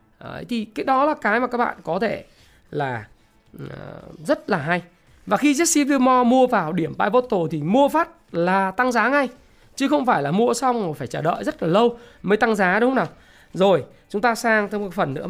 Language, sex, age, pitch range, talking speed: Vietnamese, male, 20-39, 155-240 Hz, 220 wpm